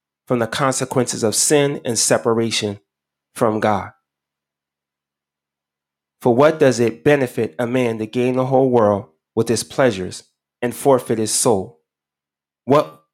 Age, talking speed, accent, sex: 20-39, 130 wpm, American, male